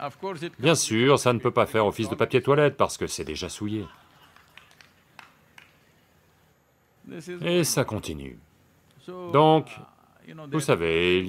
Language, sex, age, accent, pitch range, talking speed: English, male, 40-59, French, 95-155 Hz, 120 wpm